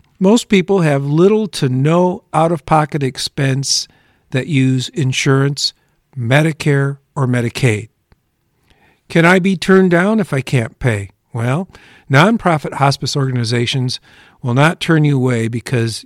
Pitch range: 125-160 Hz